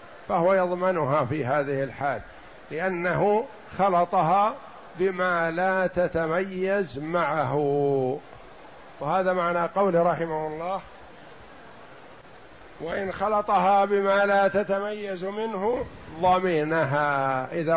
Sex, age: male, 60-79